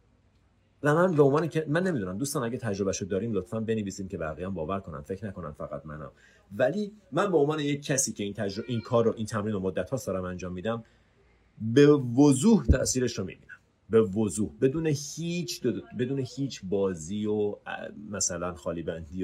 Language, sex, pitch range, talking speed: Persian, male, 95-115 Hz, 175 wpm